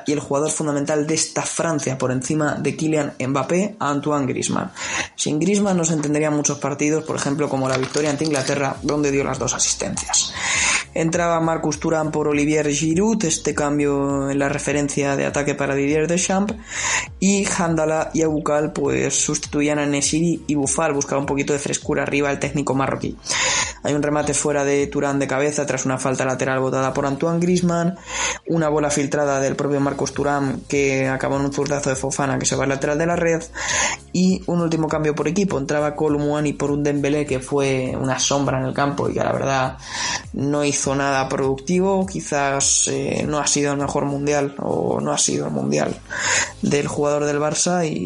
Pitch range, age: 140-155 Hz, 20-39